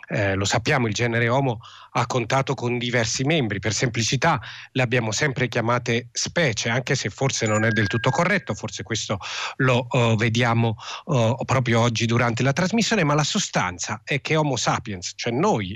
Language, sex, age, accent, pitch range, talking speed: Italian, male, 40-59, native, 115-140 Hz, 170 wpm